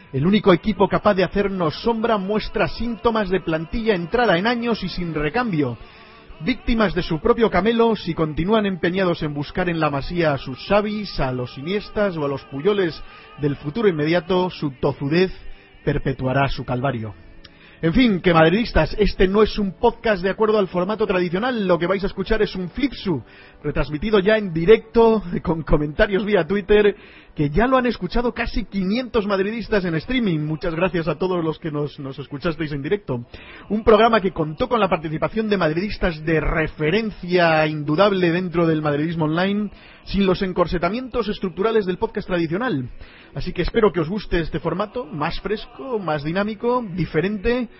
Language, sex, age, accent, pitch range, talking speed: Spanish, male, 40-59, Spanish, 155-210 Hz, 170 wpm